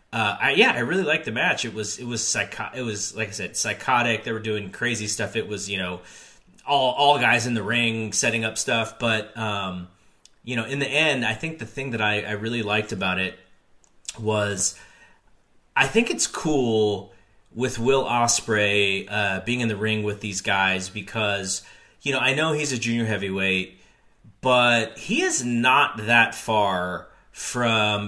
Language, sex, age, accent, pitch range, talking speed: English, male, 30-49, American, 105-125 Hz, 185 wpm